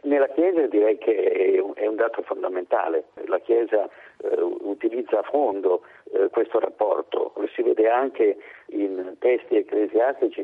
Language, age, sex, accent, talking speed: Italian, 50-69, male, native, 140 wpm